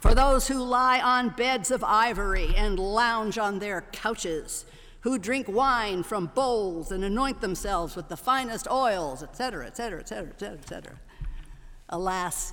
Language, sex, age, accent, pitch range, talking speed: English, female, 60-79, American, 185-260 Hz, 170 wpm